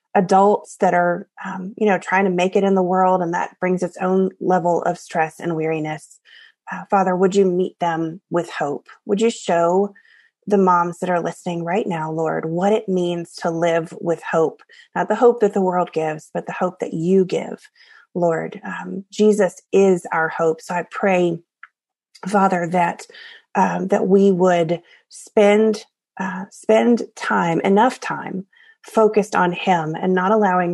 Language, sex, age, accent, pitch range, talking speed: English, female, 30-49, American, 175-215 Hz, 170 wpm